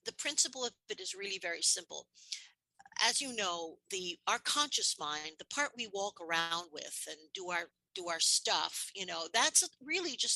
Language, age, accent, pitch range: English, 50-69, American, 175-240 Hz